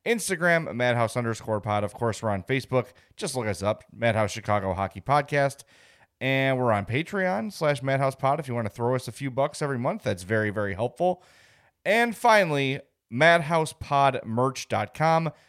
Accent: American